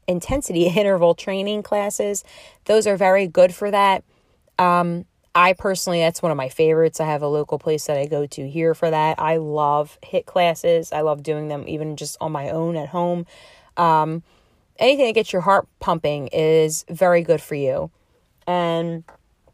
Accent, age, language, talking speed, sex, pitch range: American, 30-49, English, 180 wpm, female, 160-210 Hz